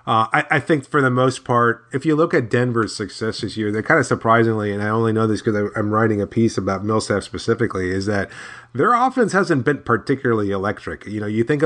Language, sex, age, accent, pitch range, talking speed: English, male, 30-49, American, 110-125 Hz, 230 wpm